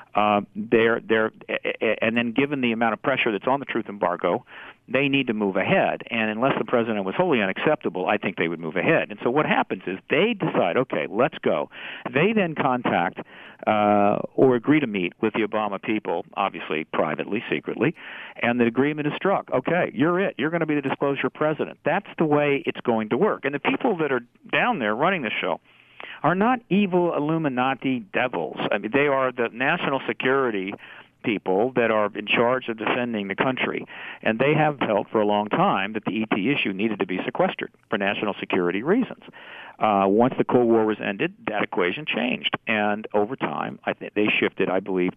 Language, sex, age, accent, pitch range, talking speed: English, male, 50-69, American, 110-145 Hz, 200 wpm